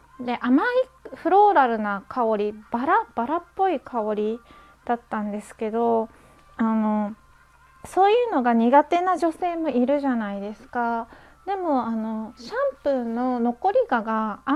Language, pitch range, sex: Japanese, 230-320 Hz, female